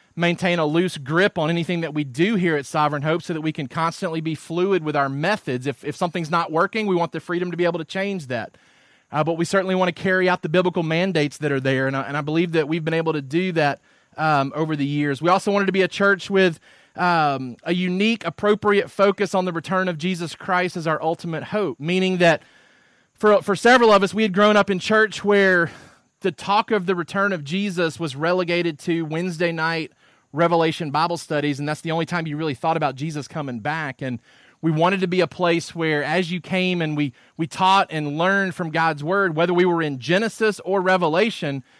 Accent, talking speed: American, 230 wpm